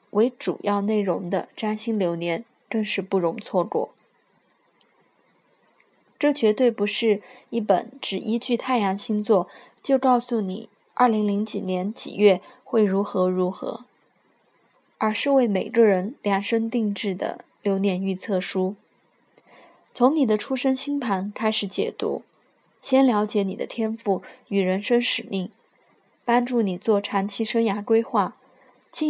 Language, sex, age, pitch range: Chinese, female, 20-39, 195-240 Hz